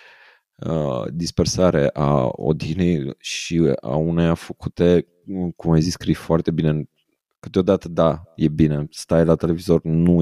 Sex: male